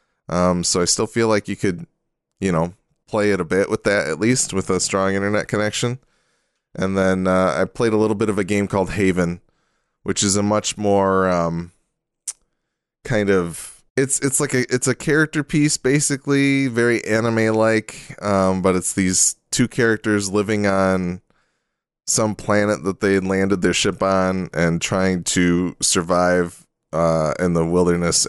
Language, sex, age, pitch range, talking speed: English, male, 20-39, 85-110 Hz, 170 wpm